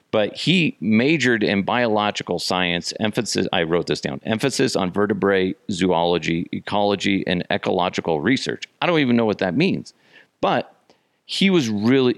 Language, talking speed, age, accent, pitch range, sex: English, 150 wpm, 40-59, American, 90-120 Hz, male